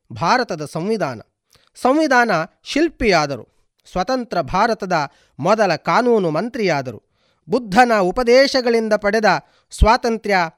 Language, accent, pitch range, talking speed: Kannada, native, 165-240 Hz, 75 wpm